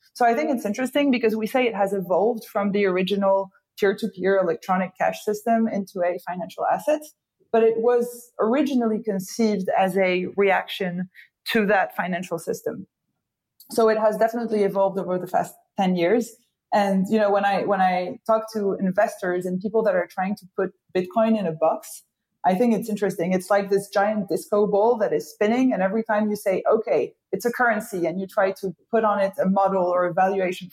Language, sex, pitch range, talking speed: English, female, 190-225 Hz, 195 wpm